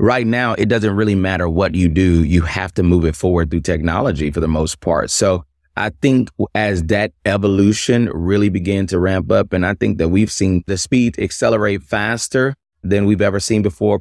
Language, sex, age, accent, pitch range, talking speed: English, male, 30-49, American, 90-105 Hz, 200 wpm